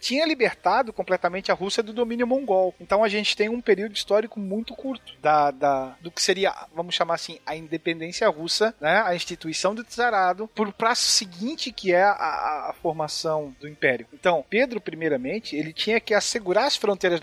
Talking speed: 185 wpm